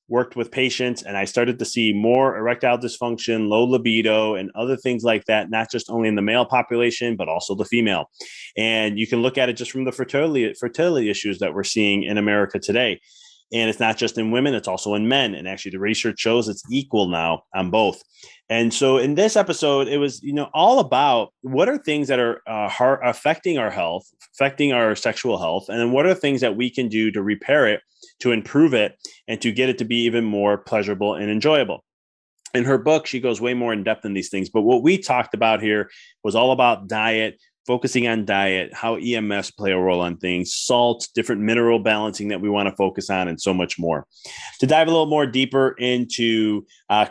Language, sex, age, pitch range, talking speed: English, male, 30-49, 105-125 Hz, 220 wpm